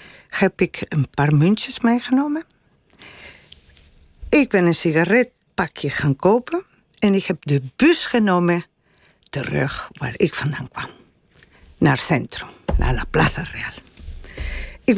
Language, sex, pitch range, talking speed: Dutch, female, 175-240 Hz, 130 wpm